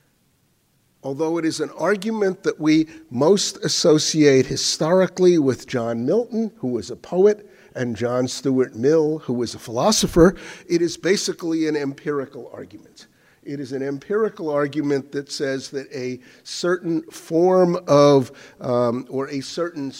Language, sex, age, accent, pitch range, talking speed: English, male, 50-69, American, 130-165 Hz, 140 wpm